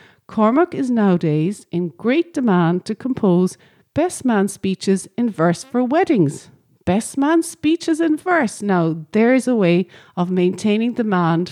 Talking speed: 145 wpm